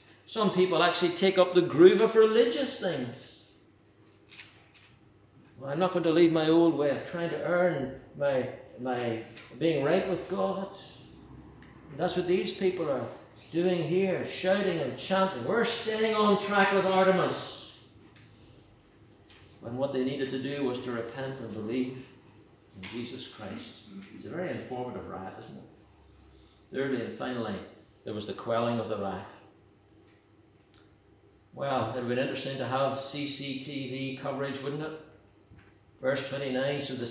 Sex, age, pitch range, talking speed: male, 60-79, 110-155 Hz, 150 wpm